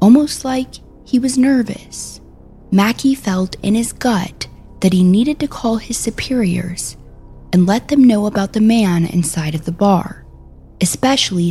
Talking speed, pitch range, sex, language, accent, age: 150 wpm, 160-230 Hz, female, English, American, 20-39